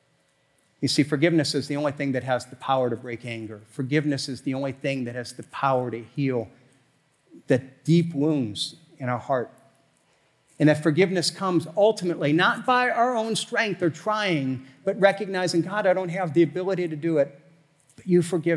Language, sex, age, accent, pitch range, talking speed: English, male, 50-69, American, 140-195 Hz, 180 wpm